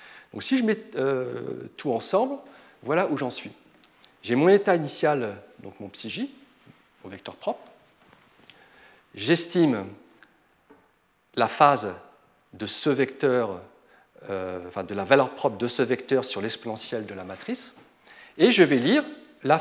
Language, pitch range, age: French, 115-165 Hz, 40-59